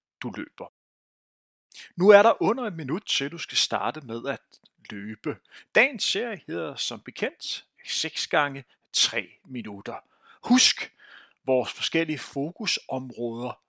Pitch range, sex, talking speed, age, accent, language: 130-205 Hz, male, 125 wpm, 30-49, native, Danish